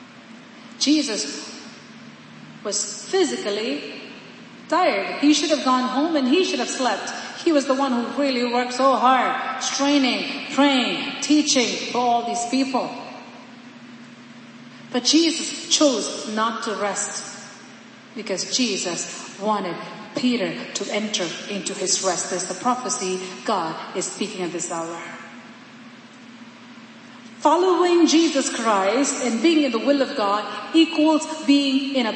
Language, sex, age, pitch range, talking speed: English, female, 40-59, 215-280 Hz, 125 wpm